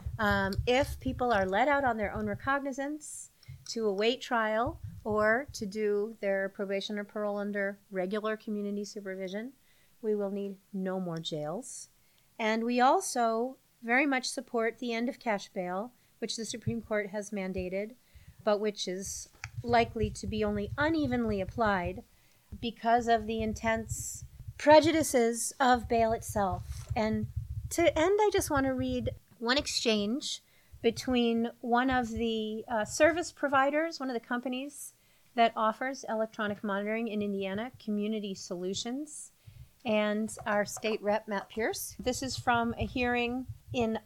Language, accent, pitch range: English, American, 205-250 Hz